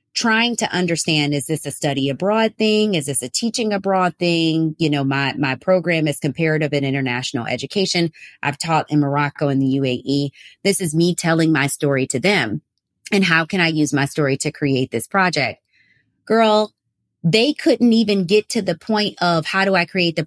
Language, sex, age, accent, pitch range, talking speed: English, female, 30-49, American, 155-220 Hz, 190 wpm